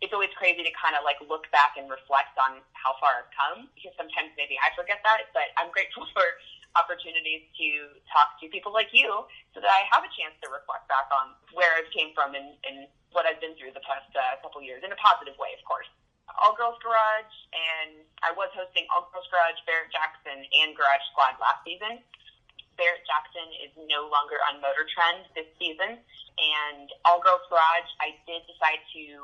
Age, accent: 20-39, American